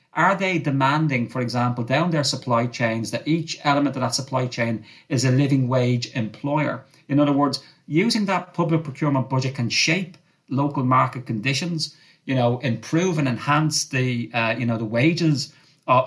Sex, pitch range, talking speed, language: male, 125-150 Hz, 170 wpm, English